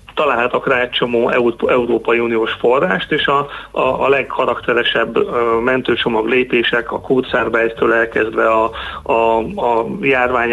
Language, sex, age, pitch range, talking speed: Hungarian, male, 30-49, 115-130 Hz, 120 wpm